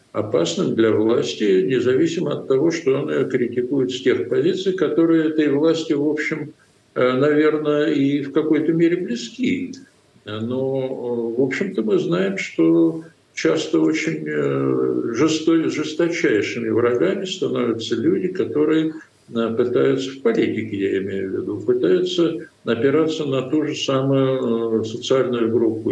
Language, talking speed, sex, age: Russian, 120 wpm, male, 60-79